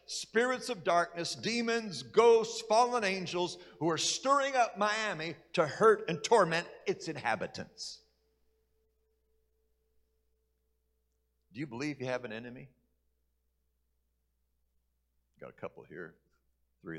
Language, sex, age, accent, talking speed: English, male, 60-79, American, 105 wpm